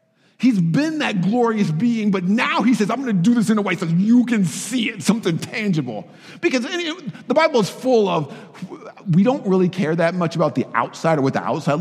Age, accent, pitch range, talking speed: 50-69, American, 155-205 Hz, 220 wpm